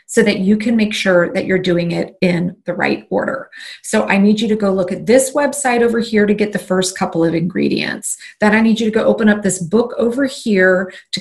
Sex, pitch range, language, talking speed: female, 195-255 Hz, English, 245 wpm